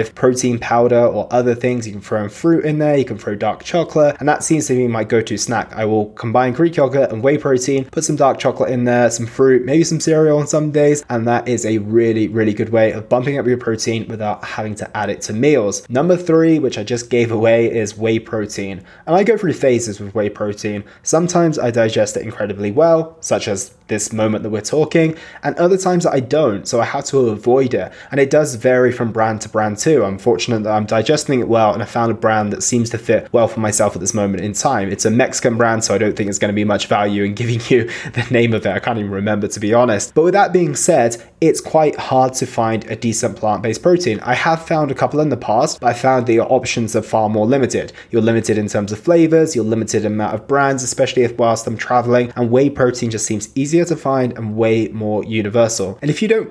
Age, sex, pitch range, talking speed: 20-39, male, 110-140 Hz, 245 wpm